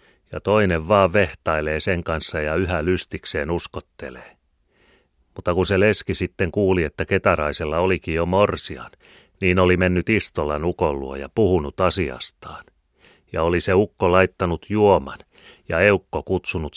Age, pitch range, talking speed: 30-49, 80-95 Hz, 135 wpm